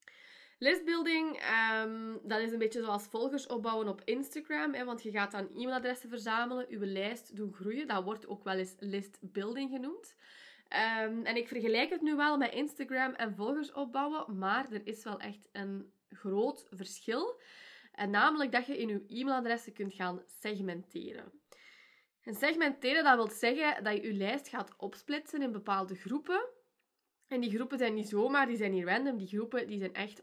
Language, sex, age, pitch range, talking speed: Dutch, female, 20-39, 195-255 Hz, 175 wpm